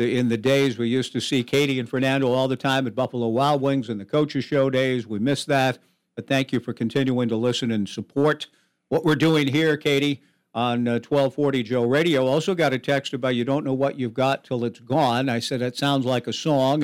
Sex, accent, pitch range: male, American, 115-140 Hz